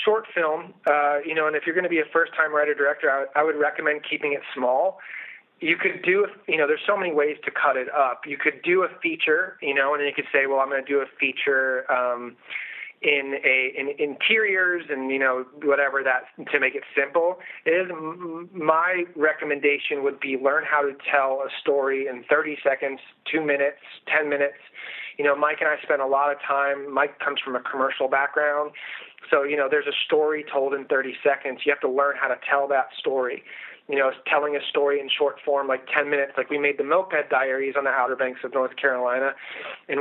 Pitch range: 135-160 Hz